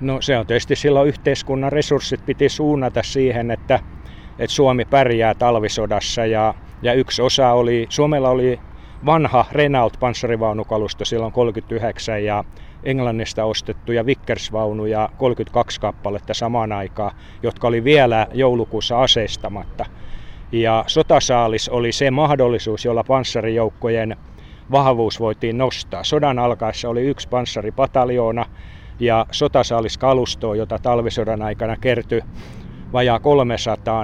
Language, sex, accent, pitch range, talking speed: Finnish, male, native, 105-125 Hz, 110 wpm